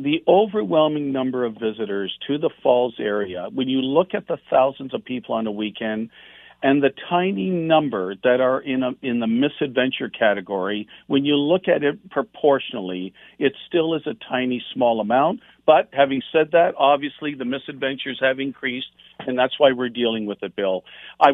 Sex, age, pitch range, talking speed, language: male, 50-69, 115-145 Hz, 175 wpm, English